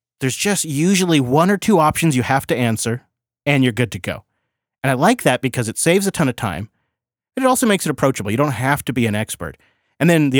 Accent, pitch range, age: American, 115-160 Hz, 30-49